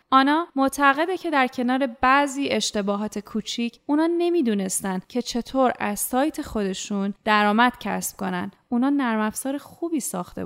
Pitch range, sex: 200-250 Hz, female